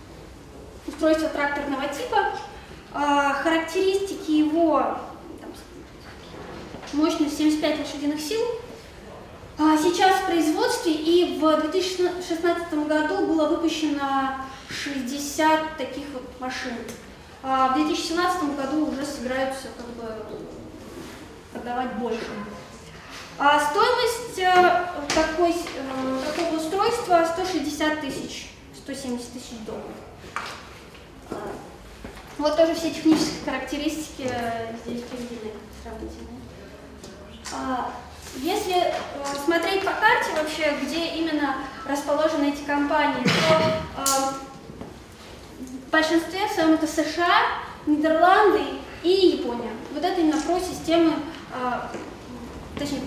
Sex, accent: female, native